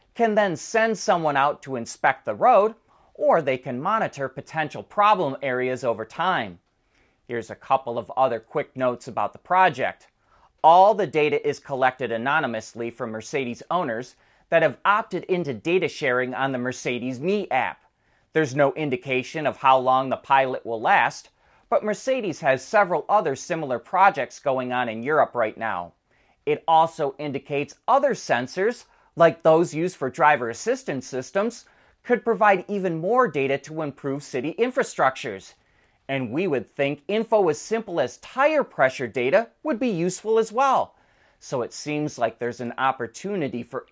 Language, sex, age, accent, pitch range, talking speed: English, male, 30-49, American, 125-185 Hz, 160 wpm